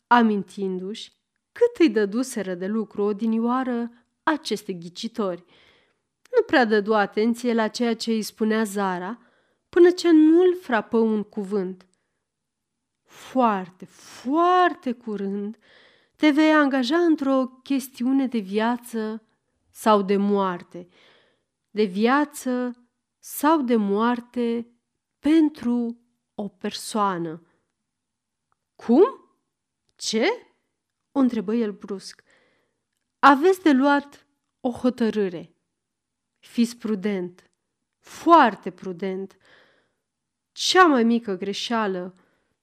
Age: 30-49